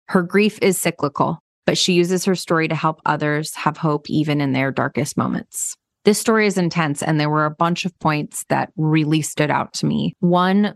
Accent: American